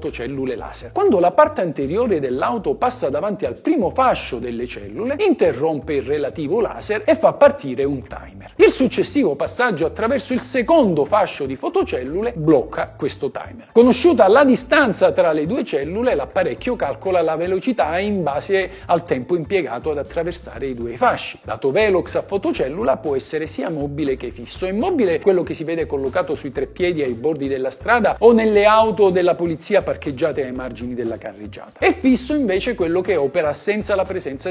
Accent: native